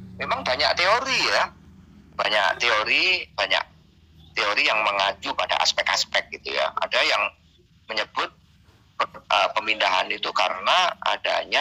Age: 40-59